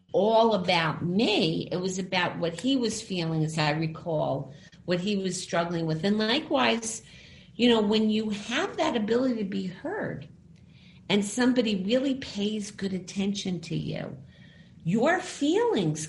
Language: English